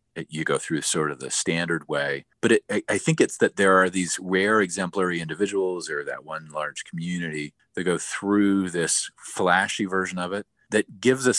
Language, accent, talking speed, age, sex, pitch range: English, American, 195 wpm, 40-59, male, 80-100 Hz